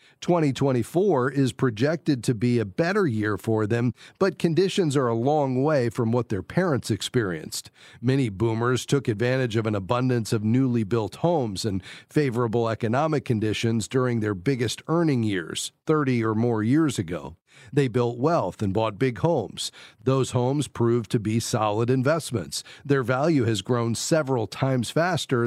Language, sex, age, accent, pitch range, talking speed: English, male, 40-59, American, 115-145 Hz, 160 wpm